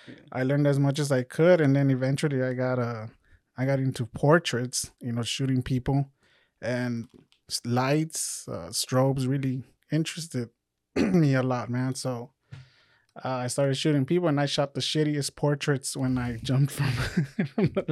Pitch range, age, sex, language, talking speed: 125-140 Hz, 20-39, male, English, 165 wpm